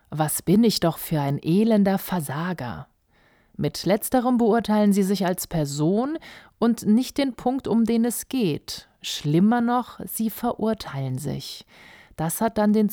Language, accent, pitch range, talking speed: German, German, 170-230 Hz, 150 wpm